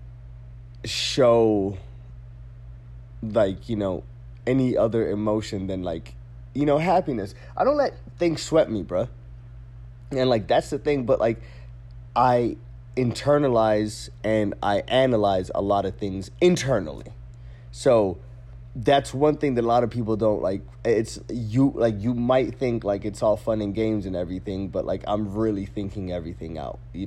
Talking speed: 155 wpm